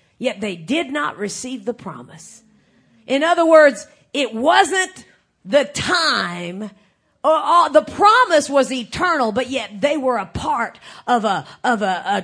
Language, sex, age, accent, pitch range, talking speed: English, female, 40-59, American, 265-365 Hz, 145 wpm